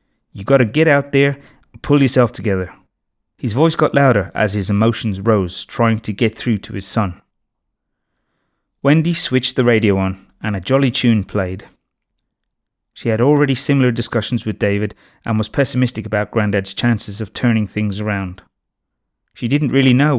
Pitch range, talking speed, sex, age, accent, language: 105-130 Hz, 165 wpm, male, 30-49, British, English